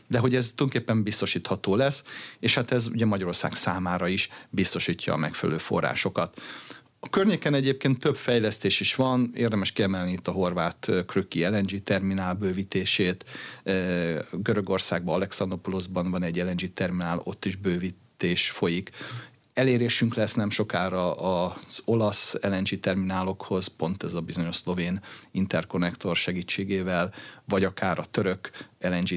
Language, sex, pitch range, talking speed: Hungarian, male, 90-120 Hz, 125 wpm